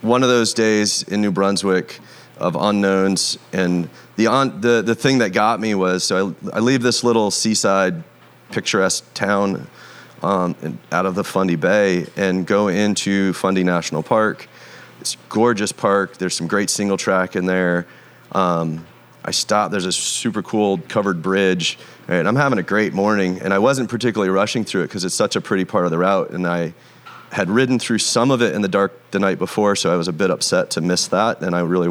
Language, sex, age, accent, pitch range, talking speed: English, male, 30-49, American, 90-105 Hz, 200 wpm